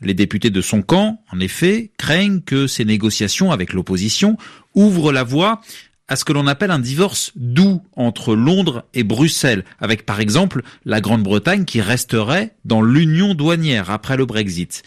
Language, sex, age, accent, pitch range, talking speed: French, male, 40-59, French, 110-165 Hz, 165 wpm